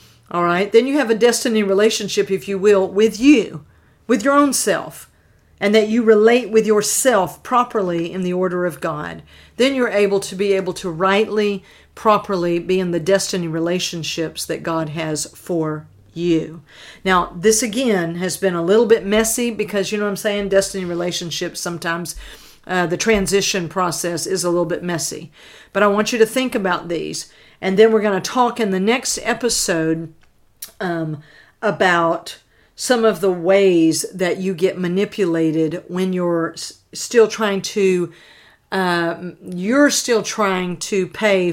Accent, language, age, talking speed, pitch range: American, English, 50-69, 165 wpm, 170-210 Hz